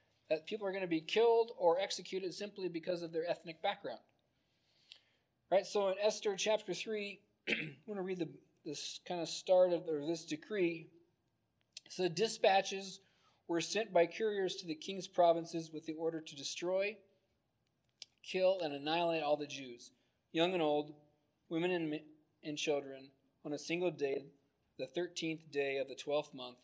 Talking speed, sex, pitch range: 160 wpm, male, 145-180 Hz